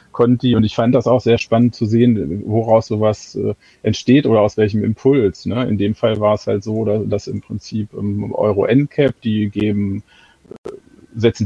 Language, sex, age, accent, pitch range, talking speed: German, male, 40-59, German, 105-125 Hz, 155 wpm